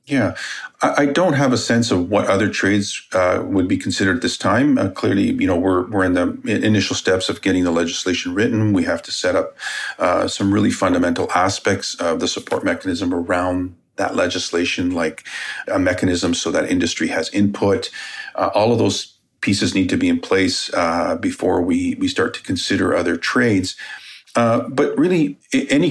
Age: 40-59